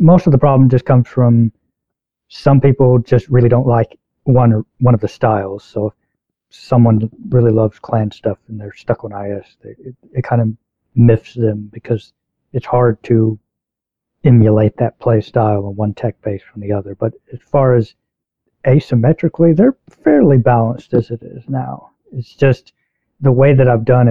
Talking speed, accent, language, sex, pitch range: 180 wpm, American, English, male, 110-130 Hz